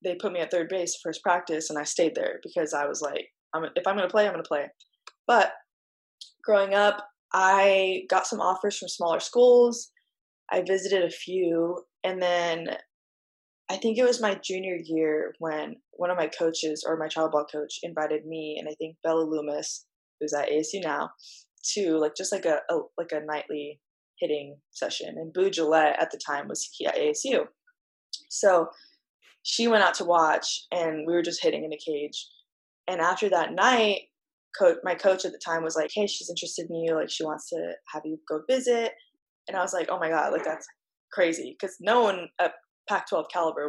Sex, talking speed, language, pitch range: female, 200 wpm, English, 160-205 Hz